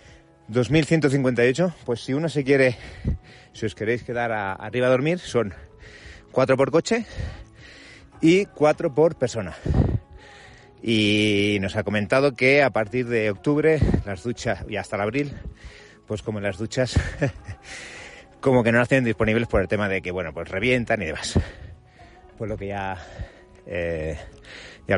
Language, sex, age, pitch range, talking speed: Spanish, male, 30-49, 95-135 Hz, 150 wpm